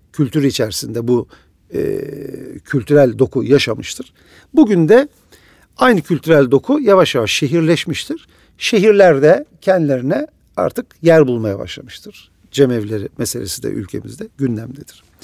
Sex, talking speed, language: male, 100 wpm, Turkish